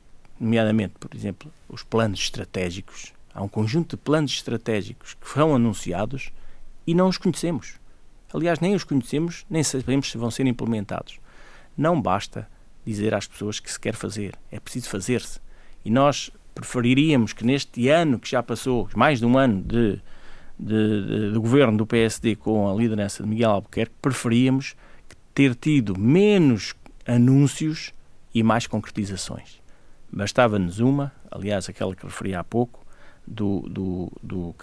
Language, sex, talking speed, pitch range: Portuguese, male, 150 wpm, 100-125 Hz